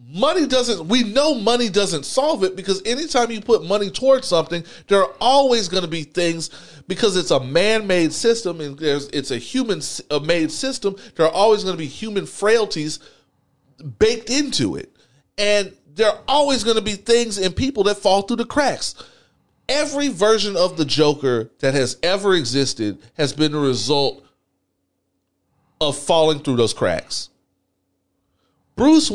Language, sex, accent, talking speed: English, male, American, 160 wpm